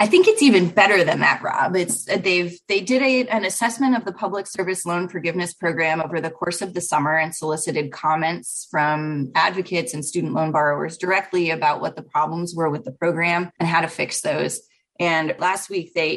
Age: 20-39